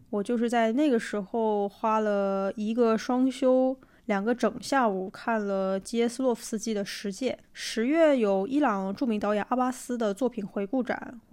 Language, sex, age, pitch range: Chinese, female, 20-39, 210-240 Hz